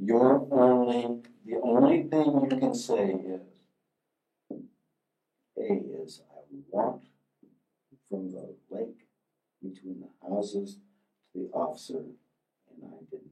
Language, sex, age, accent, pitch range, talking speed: English, male, 60-79, American, 100-145 Hz, 115 wpm